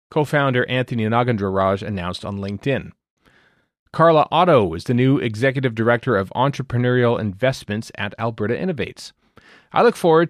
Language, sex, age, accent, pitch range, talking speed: English, male, 30-49, American, 110-155 Hz, 130 wpm